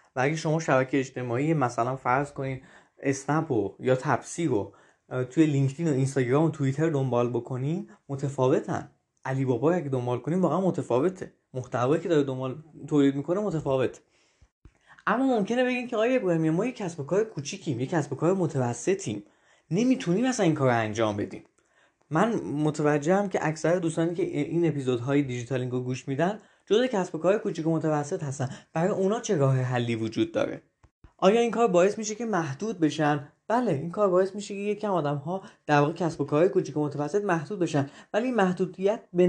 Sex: male